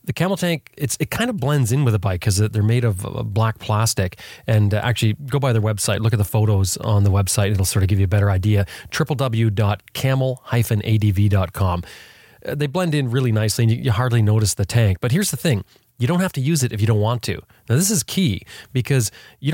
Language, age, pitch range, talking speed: English, 30-49, 105-135 Hz, 230 wpm